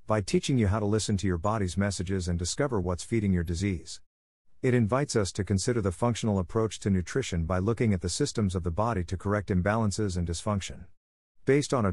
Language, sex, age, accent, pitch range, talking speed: English, male, 50-69, American, 90-115 Hz, 210 wpm